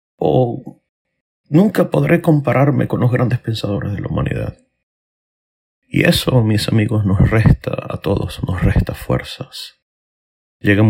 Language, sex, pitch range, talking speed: Spanish, male, 90-125 Hz, 125 wpm